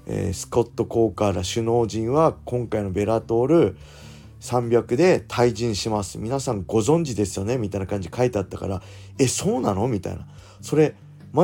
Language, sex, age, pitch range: Japanese, male, 40-59, 100-125 Hz